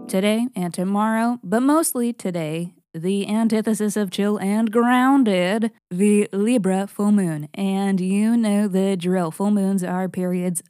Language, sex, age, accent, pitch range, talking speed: English, female, 20-39, American, 180-235 Hz, 140 wpm